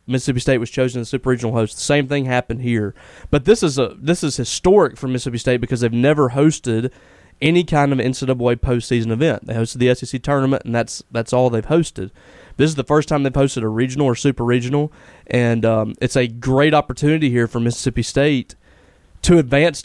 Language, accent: English, American